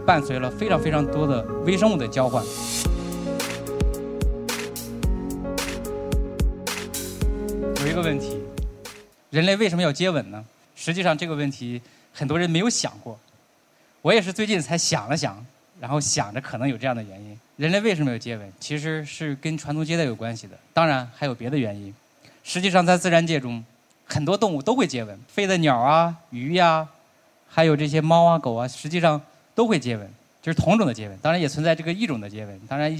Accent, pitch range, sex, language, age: native, 120-165 Hz, male, Chinese, 20-39